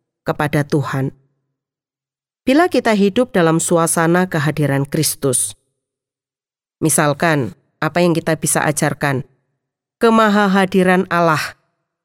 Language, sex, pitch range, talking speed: Indonesian, female, 150-210 Hz, 85 wpm